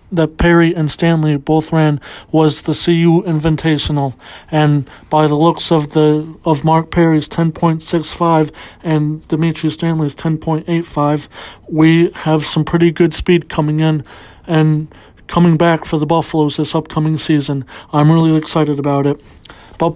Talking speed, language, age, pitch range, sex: 160 wpm, English, 40-59, 155-175 Hz, male